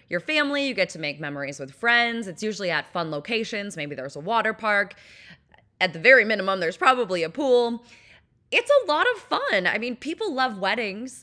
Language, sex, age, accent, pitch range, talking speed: English, female, 20-39, American, 160-235 Hz, 200 wpm